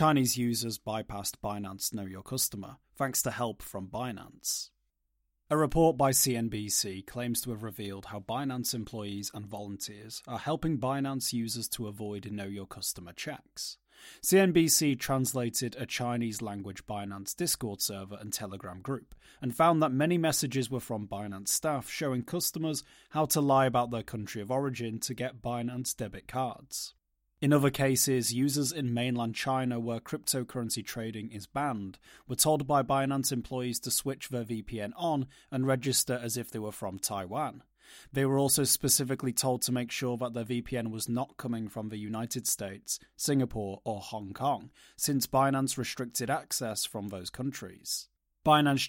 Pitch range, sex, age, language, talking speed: 110-135 Hz, male, 30-49, English, 160 wpm